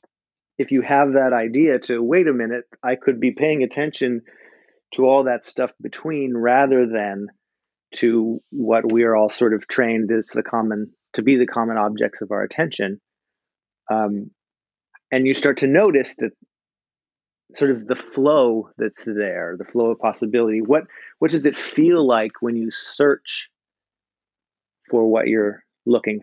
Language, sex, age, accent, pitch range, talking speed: English, male, 30-49, American, 115-135 Hz, 160 wpm